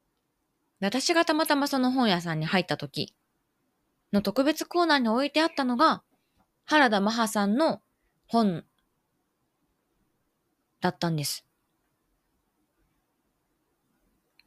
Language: Japanese